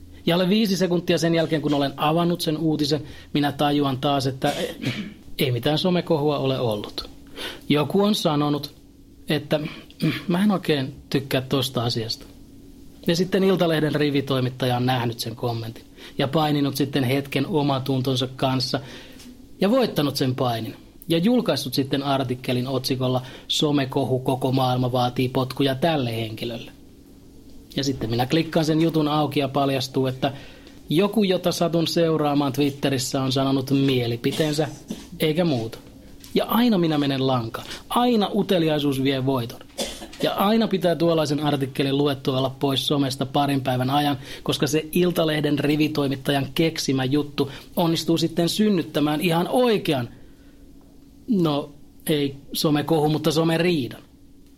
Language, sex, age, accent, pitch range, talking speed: Finnish, male, 30-49, native, 135-165 Hz, 130 wpm